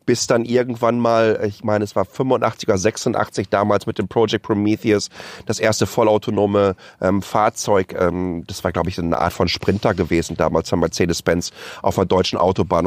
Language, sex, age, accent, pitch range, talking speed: German, male, 30-49, German, 100-130 Hz, 180 wpm